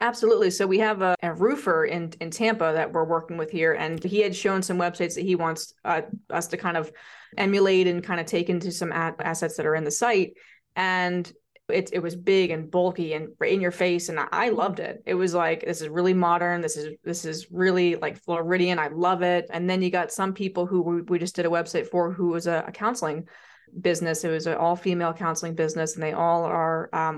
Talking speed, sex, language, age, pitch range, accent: 235 wpm, female, English, 20-39, 165-185 Hz, American